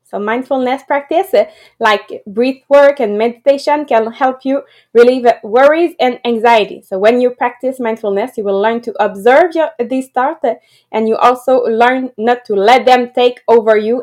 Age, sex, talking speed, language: 20-39, female, 165 wpm, English